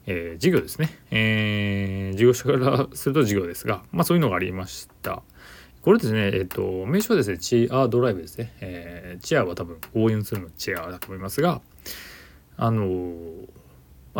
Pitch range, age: 90-120 Hz, 20-39